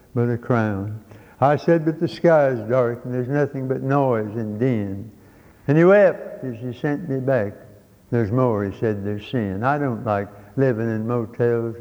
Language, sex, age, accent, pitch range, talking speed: English, male, 60-79, American, 120-165 Hz, 190 wpm